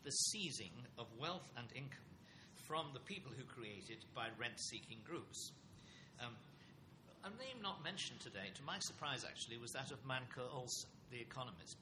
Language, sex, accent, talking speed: English, male, British, 160 wpm